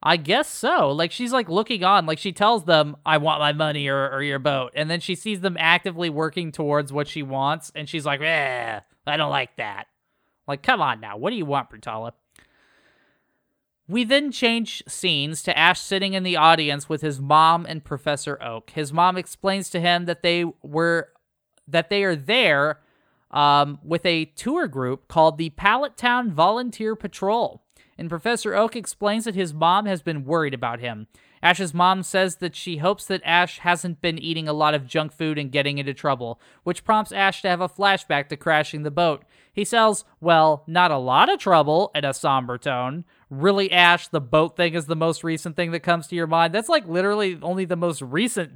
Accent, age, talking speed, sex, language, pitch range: American, 20-39, 205 wpm, male, English, 150-200 Hz